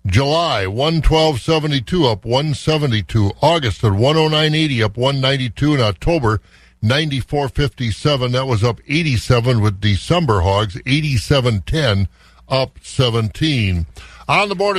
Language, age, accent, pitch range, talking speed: English, 60-79, American, 115-155 Hz, 165 wpm